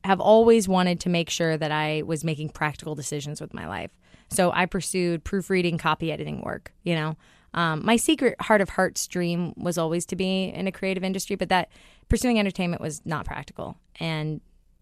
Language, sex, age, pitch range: English, female, 20-39, 160-205 Hz